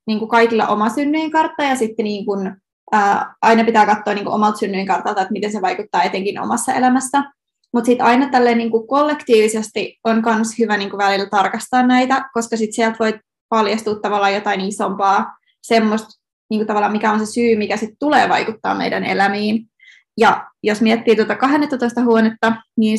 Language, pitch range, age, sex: Finnish, 215-255 Hz, 20-39, female